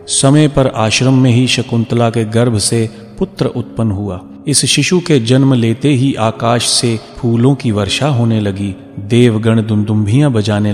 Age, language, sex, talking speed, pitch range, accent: 30-49, Hindi, male, 150 wpm, 105-130 Hz, native